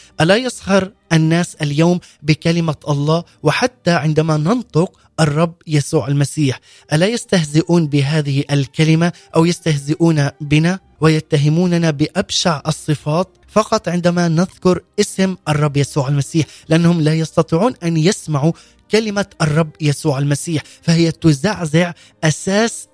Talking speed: 105 wpm